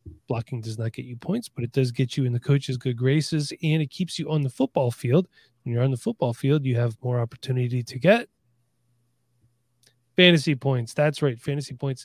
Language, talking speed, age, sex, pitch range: English, 210 wpm, 20-39, male, 125-150 Hz